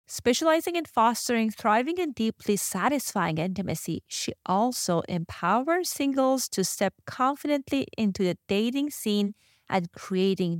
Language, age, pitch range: English, 30-49, 185-255 Hz